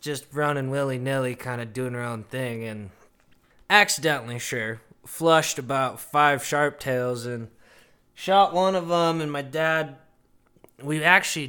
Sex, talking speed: male, 140 wpm